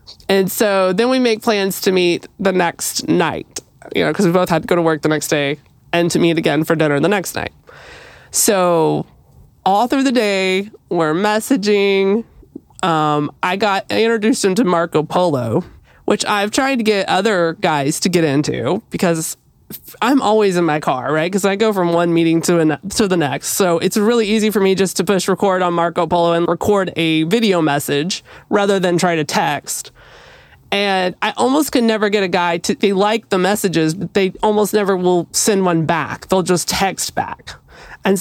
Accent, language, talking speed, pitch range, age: American, English, 195 wpm, 170-220 Hz, 20-39